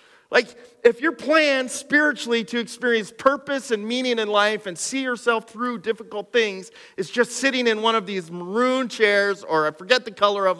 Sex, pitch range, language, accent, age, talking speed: male, 195-270 Hz, English, American, 40-59, 185 wpm